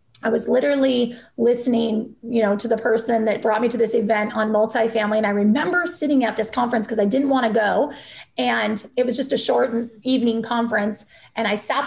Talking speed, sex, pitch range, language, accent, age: 205 wpm, female, 210-245 Hz, English, American, 30-49